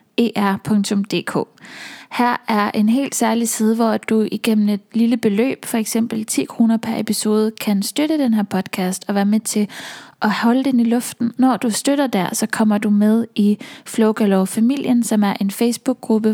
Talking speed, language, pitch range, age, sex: 180 wpm, English, 205-235 Hz, 20-39, female